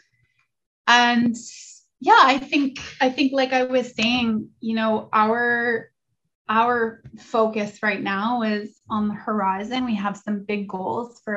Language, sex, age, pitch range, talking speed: English, female, 20-39, 205-240 Hz, 145 wpm